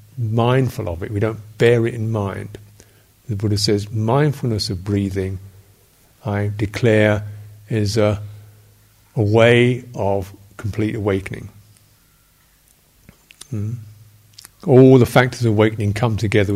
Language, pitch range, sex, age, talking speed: English, 105-125 Hz, male, 50-69, 115 wpm